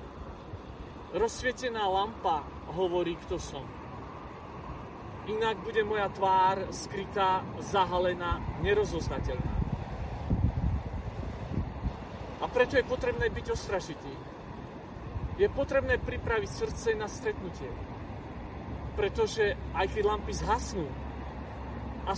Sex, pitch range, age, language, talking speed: male, 180-255 Hz, 40-59, Slovak, 80 wpm